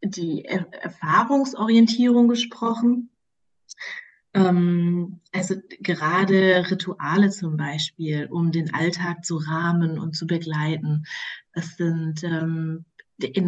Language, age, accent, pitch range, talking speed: German, 30-49, German, 165-200 Hz, 95 wpm